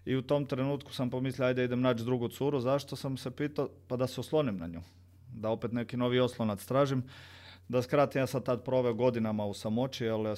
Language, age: Croatian, 40-59